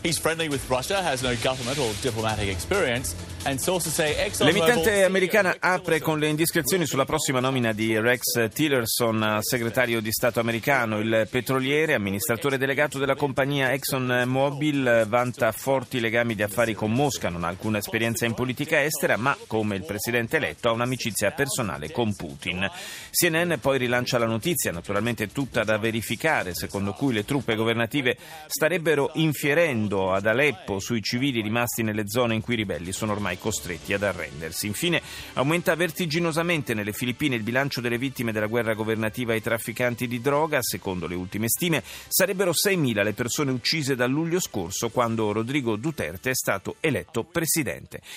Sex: male